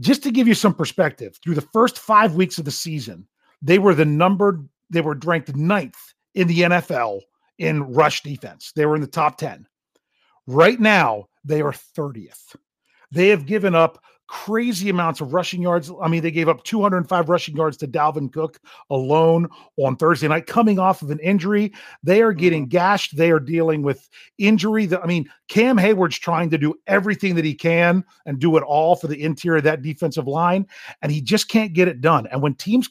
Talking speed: 200 wpm